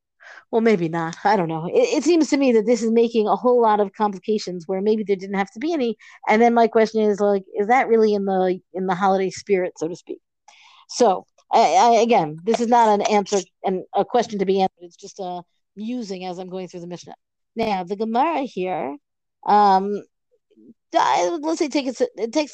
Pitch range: 200-245 Hz